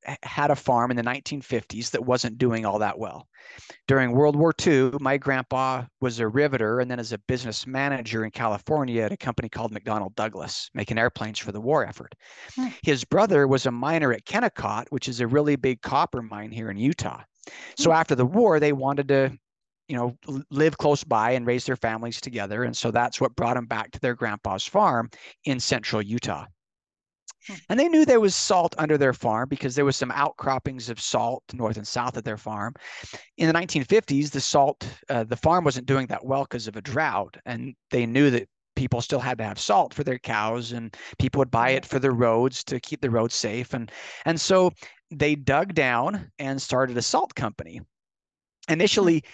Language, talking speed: English, 200 wpm